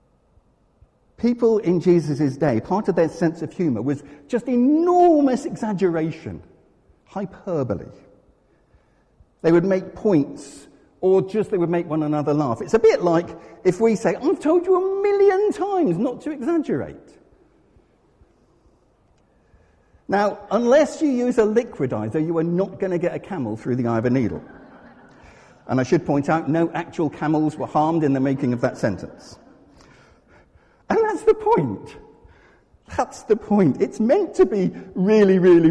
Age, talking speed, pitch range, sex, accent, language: 50-69, 150 wpm, 155-225 Hz, male, British, English